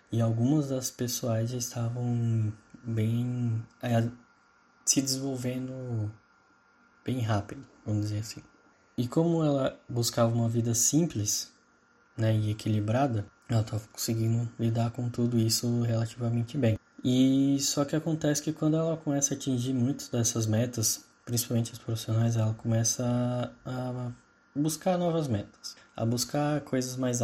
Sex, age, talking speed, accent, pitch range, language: male, 10-29, 130 wpm, Brazilian, 115-135 Hz, Portuguese